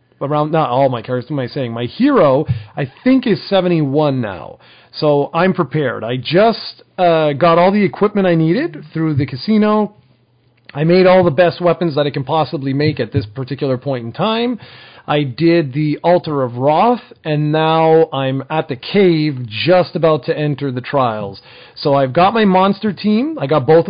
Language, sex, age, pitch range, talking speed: English, male, 40-59, 130-175 Hz, 190 wpm